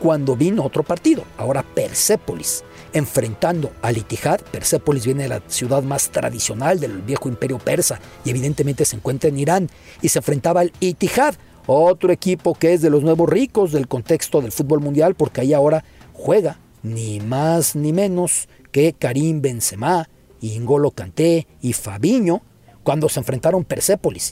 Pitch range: 130-180 Hz